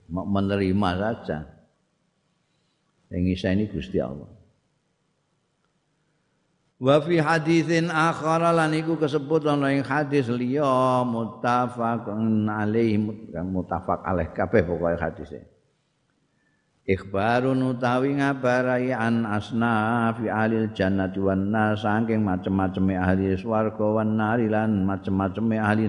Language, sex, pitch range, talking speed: Indonesian, male, 95-125 Hz, 95 wpm